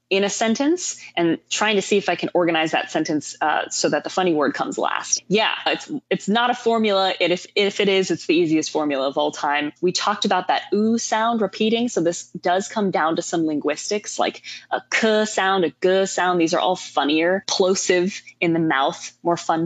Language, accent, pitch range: English, American, 175-230 Hz